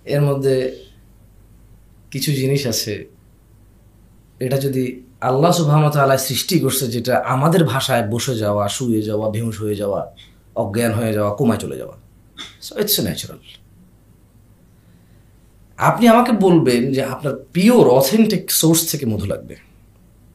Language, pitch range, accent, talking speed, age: Bengali, 110-175 Hz, native, 125 wpm, 30-49